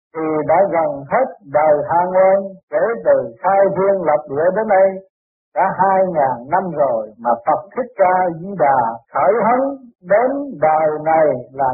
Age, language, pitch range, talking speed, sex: 60-79, Vietnamese, 155-215 Hz, 165 wpm, male